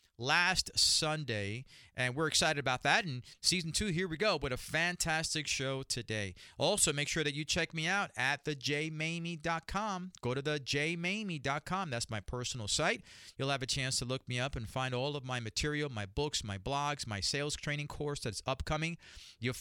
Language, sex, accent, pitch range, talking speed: English, male, American, 125-170 Hz, 185 wpm